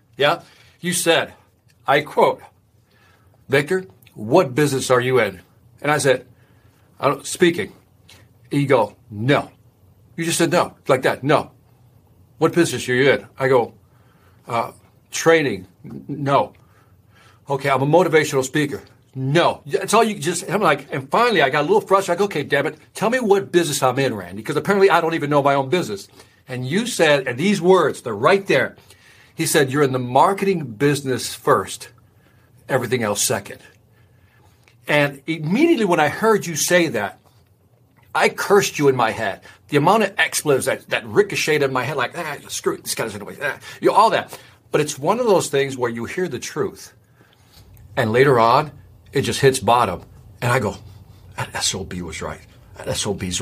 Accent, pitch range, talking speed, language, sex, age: American, 110-155 Hz, 180 wpm, English, male, 60-79